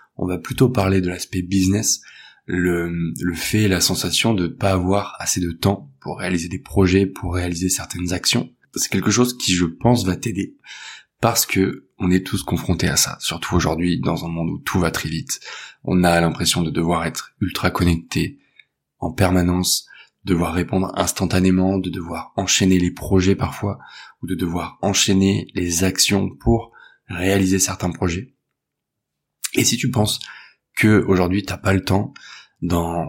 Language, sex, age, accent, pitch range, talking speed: French, male, 20-39, French, 90-100 Hz, 170 wpm